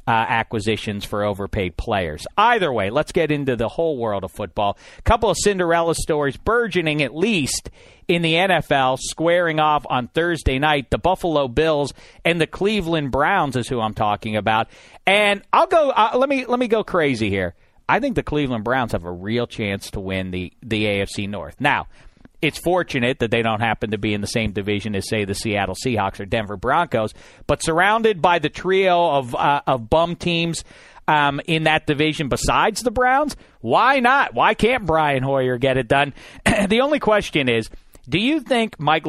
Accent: American